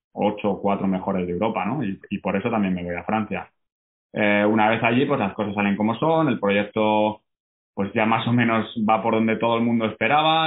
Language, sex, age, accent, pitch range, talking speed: Spanish, male, 20-39, Spanish, 100-110 Hz, 230 wpm